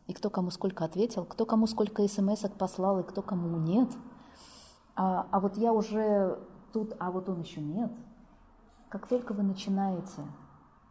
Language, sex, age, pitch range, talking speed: Russian, female, 20-39, 180-245 Hz, 160 wpm